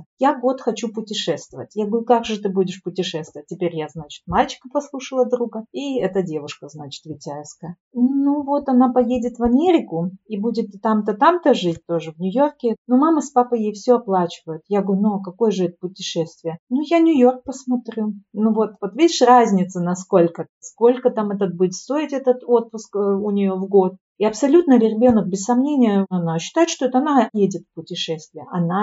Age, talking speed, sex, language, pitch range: 40-59, 180 wpm, female, Russian, 165-240 Hz